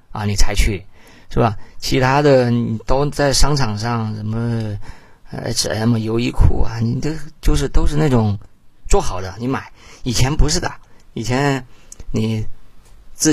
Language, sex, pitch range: Chinese, male, 100-130 Hz